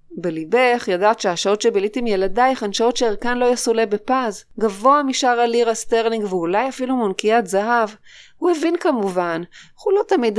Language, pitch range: Hebrew, 195-245 Hz